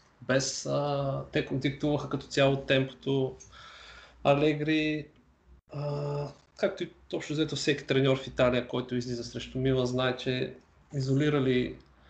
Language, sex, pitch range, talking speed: Bulgarian, male, 120-140 Hz, 115 wpm